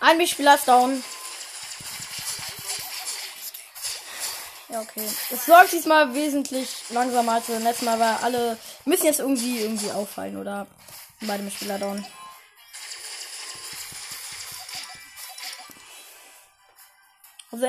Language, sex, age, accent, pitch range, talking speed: German, female, 10-29, German, 235-290 Hz, 95 wpm